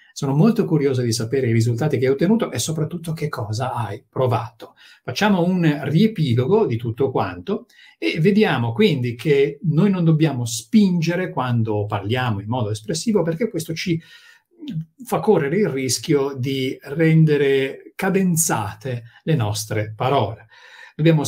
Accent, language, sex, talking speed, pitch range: native, Italian, male, 140 wpm, 110-160 Hz